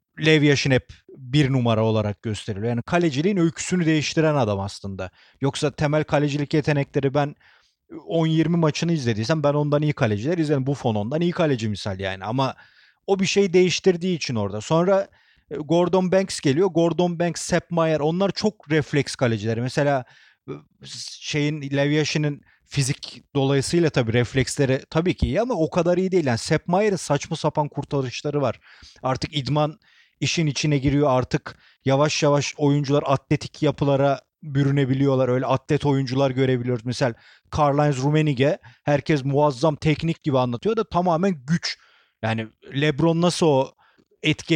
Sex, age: male, 40-59